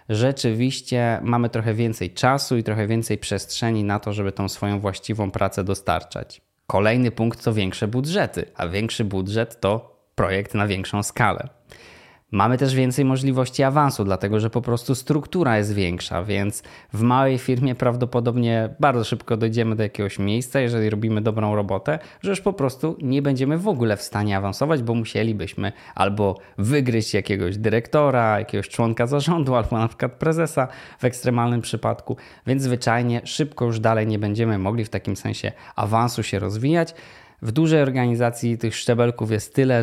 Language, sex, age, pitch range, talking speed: Polish, male, 20-39, 105-125 Hz, 160 wpm